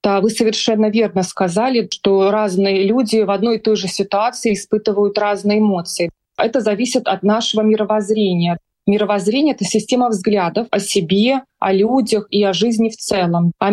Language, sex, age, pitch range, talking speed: Russian, female, 20-39, 190-220 Hz, 155 wpm